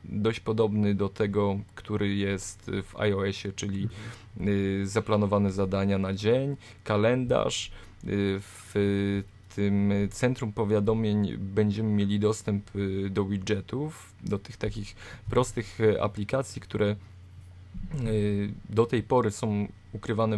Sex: male